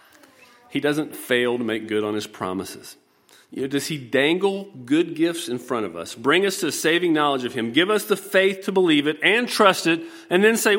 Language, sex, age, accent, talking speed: English, male, 40-59, American, 230 wpm